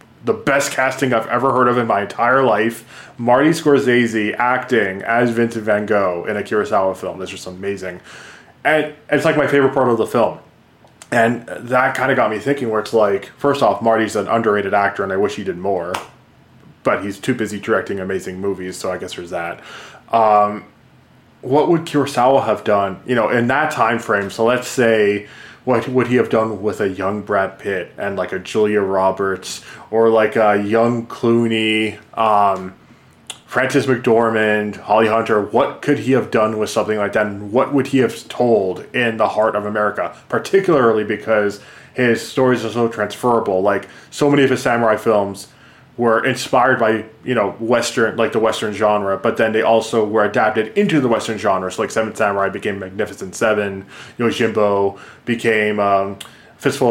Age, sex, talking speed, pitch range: 20-39, male, 185 wpm, 105-125 Hz